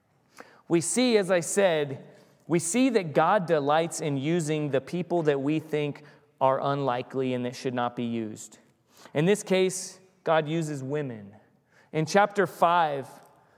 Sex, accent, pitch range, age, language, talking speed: male, American, 150-190 Hz, 30-49, English, 150 wpm